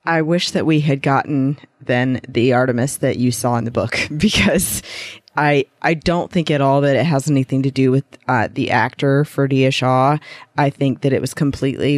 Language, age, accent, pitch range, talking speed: English, 30-49, American, 130-145 Hz, 200 wpm